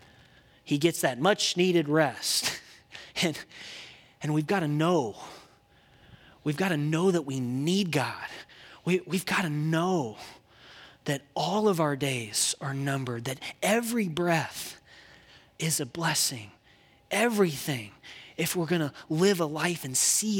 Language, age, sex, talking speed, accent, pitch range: English, 30-49, male, 135 wpm, American, 165-240 Hz